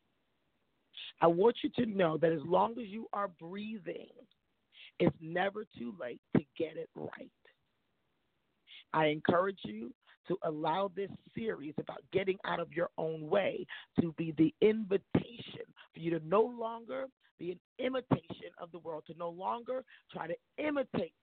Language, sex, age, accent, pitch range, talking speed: English, male, 40-59, American, 165-230 Hz, 155 wpm